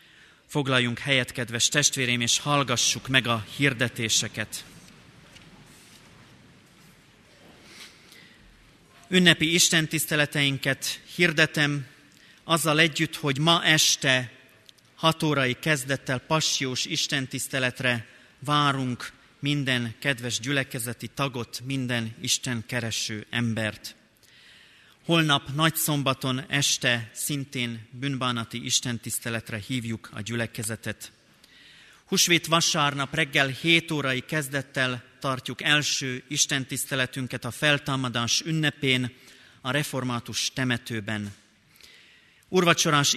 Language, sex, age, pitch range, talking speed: Hungarian, male, 30-49, 120-150 Hz, 80 wpm